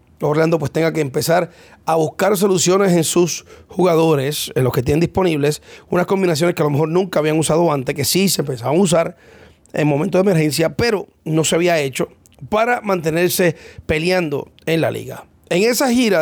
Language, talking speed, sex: English, 185 wpm, male